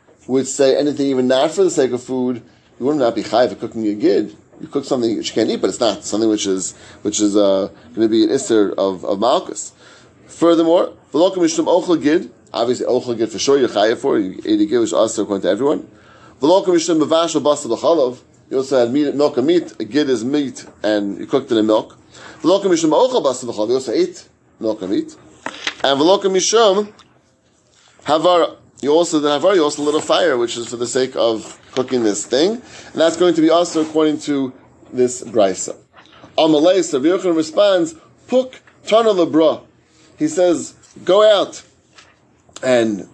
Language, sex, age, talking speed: English, male, 30-49, 195 wpm